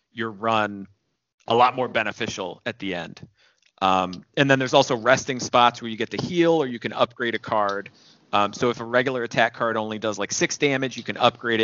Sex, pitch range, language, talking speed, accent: male, 105-135 Hz, English, 215 wpm, American